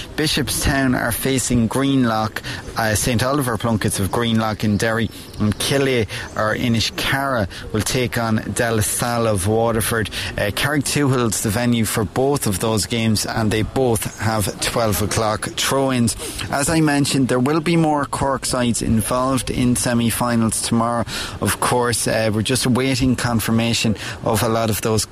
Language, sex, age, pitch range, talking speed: English, male, 30-49, 110-130 Hz, 160 wpm